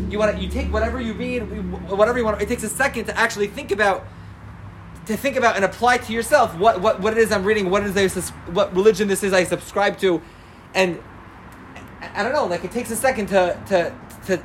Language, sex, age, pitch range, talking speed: English, male, 20-39, 185-220 Hz, 230 wpm